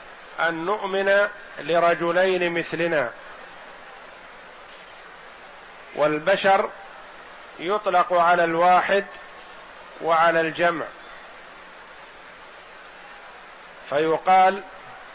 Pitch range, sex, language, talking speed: 160-190 Hz, male, Arabic, 45 wpm